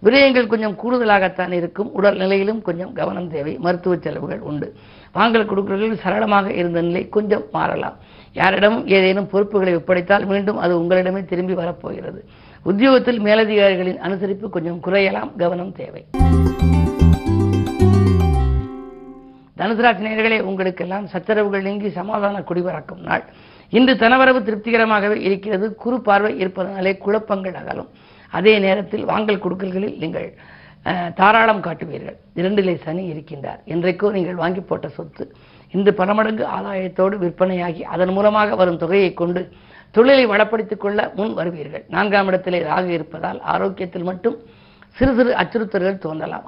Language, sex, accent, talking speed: Tamil, female, native, 115 wpm